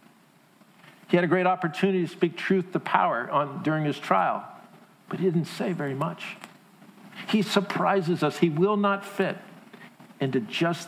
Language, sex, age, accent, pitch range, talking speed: English, male, 50-69, American, 150-190 Hz, 155 wpm